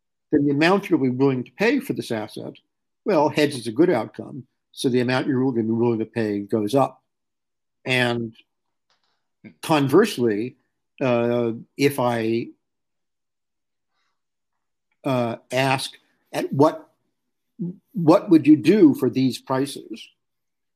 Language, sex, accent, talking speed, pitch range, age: English, male, American, 125 wpm, 120-145 Hz, 60-79